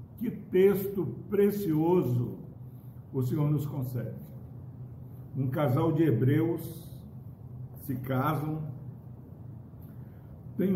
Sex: male